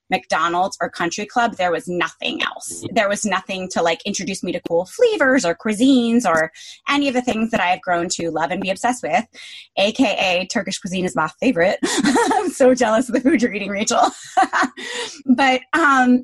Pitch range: 210-275 Hz